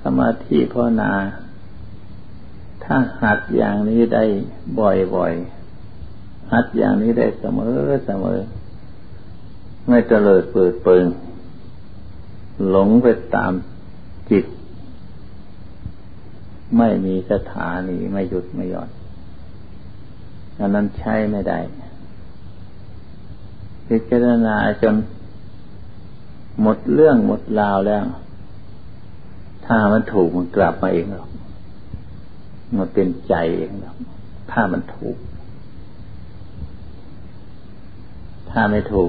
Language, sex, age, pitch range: Thai, male, 60-79, 95-110 Hz